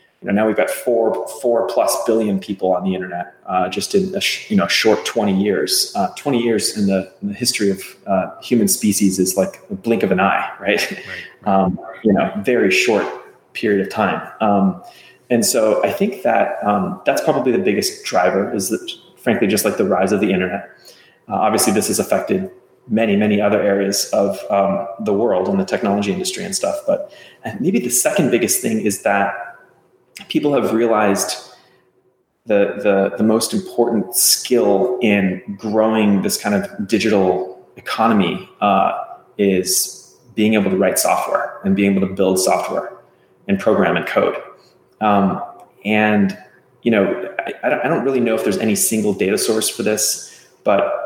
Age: 30-49